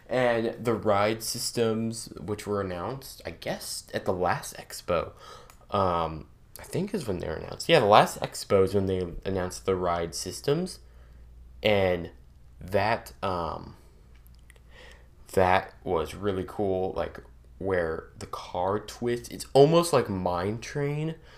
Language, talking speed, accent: English, 140 wpm, American